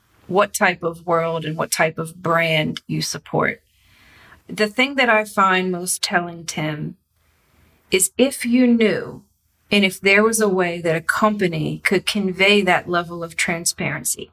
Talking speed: 160 wpm